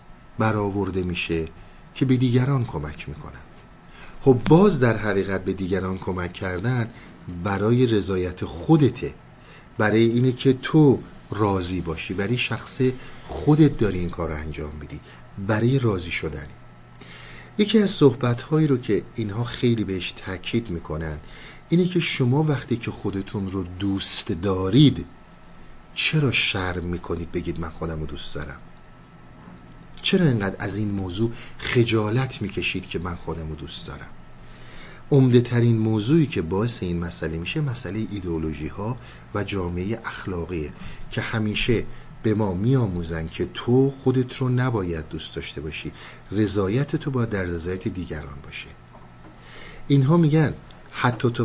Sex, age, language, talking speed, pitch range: male, 50-69, Persian, 130 wpm, 90-125 Hz